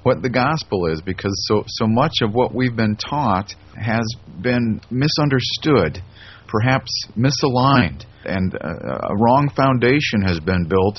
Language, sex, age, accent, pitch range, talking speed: English, male, 40-59, American, 95-120 Hz, 140 wpm